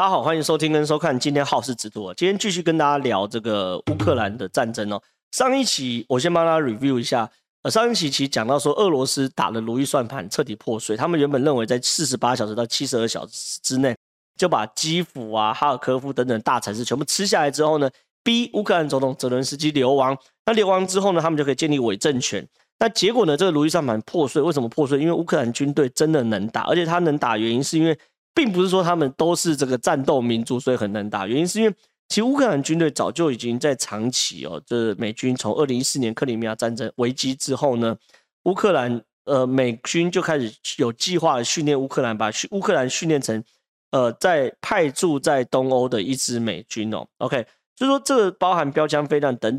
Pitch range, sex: 120-160 Hz, male